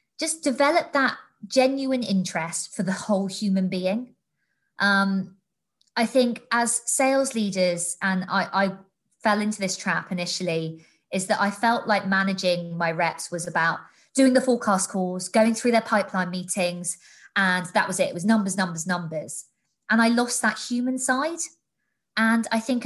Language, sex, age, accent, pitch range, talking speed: English, female, 20-39, British, 180-225 Hz, 160 wpm